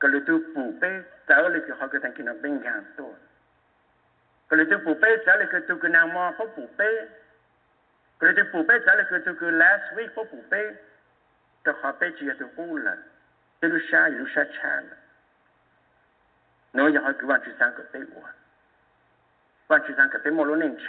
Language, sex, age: English, male, 60-79